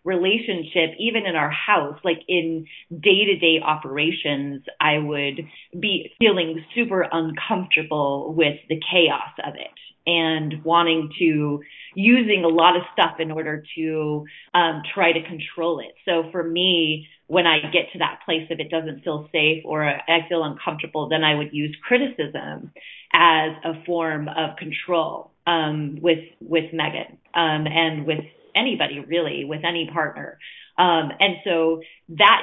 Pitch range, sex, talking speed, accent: 155-175 Hz, female, 150 wpm, American